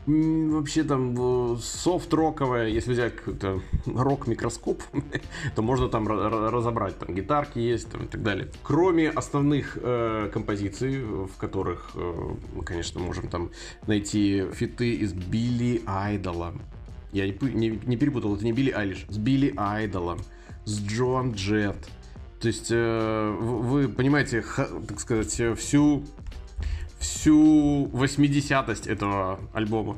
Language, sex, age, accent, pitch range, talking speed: Russian, male, 20-39, native, 100-135 Hz, 130 wpm